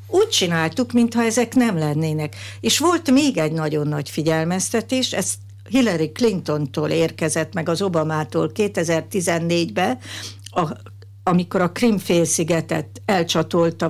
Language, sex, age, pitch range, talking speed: Hungarian, female, 60-79, 155-200 Hz, 110 wpm